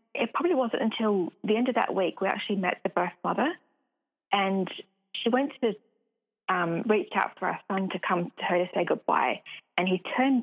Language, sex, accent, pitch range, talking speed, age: English, female, British, 190-245 Hz, 200 wpm, 30-49